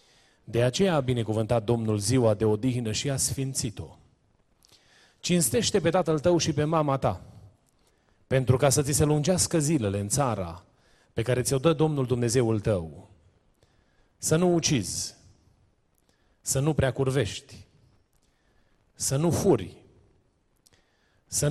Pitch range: 105-145 Hz